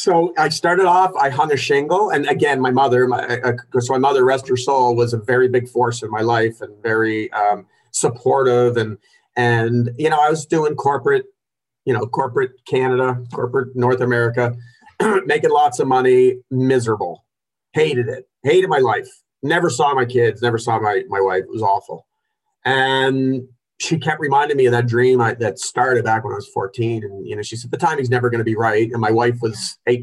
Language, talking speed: English, 205 wpm